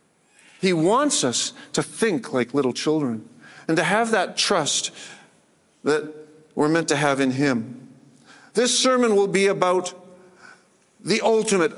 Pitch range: 160-220 Hz